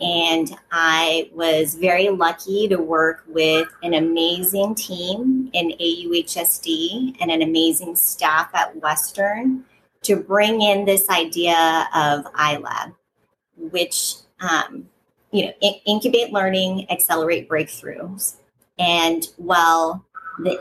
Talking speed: 110 wpm